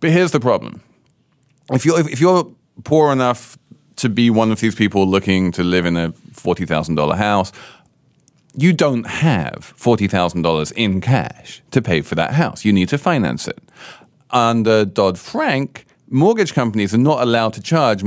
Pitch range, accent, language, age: 100-140 Hz, British, English, 40-59